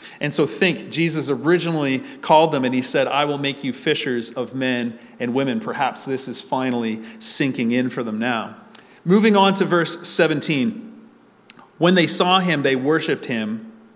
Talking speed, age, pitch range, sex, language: 170 wpm, 40-59, 125-160 Hz, male, English